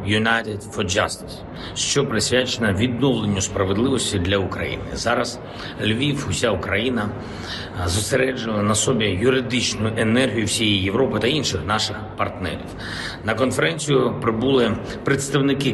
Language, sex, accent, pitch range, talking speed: Ukrainian, male, native, 100-125 Hz, 105 wpm